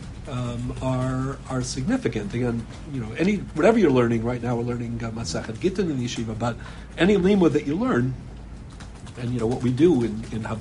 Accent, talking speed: American, 190 wpm